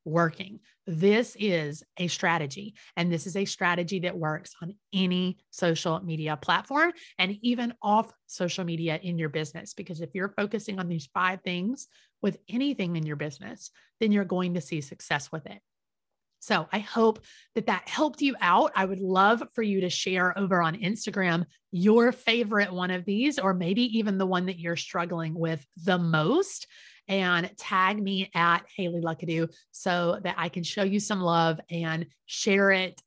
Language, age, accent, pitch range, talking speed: English, 30-49, American, 170-205 Hz, 175 wpm